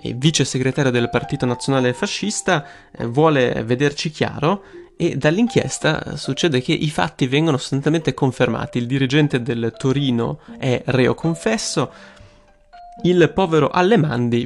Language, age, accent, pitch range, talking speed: Italian, 20-39, native, 125-160 Hz, 115 wpm